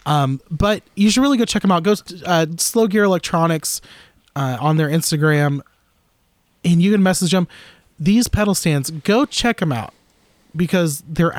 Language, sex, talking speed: English, male, 170 wpm